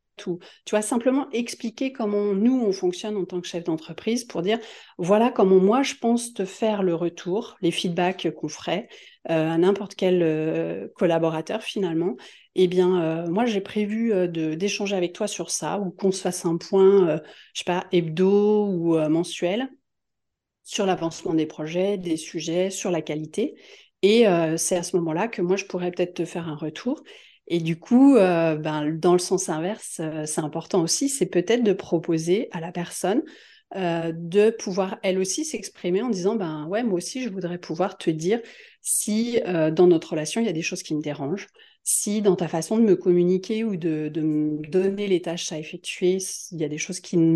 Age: 40-59